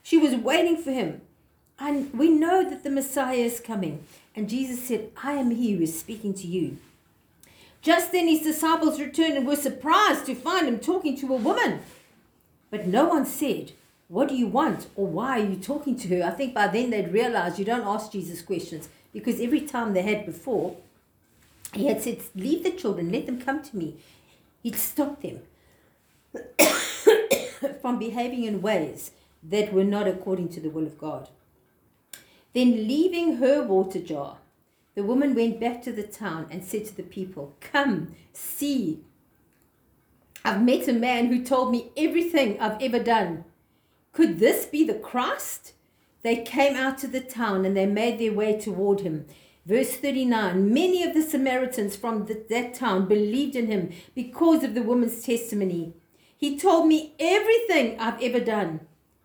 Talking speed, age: 170 wpm, 50-69